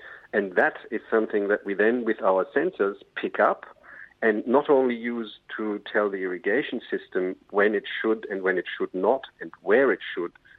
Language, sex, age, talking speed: English, male, 50-69, 185 wpm